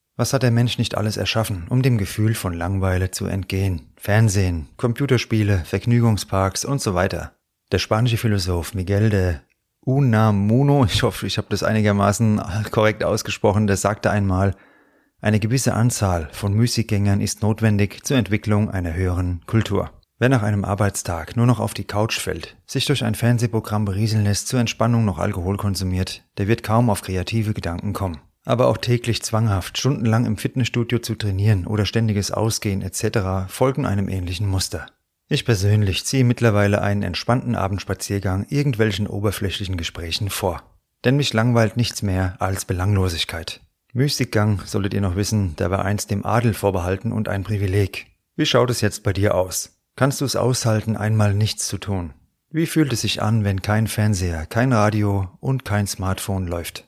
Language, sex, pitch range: German, male, 95-115 Hz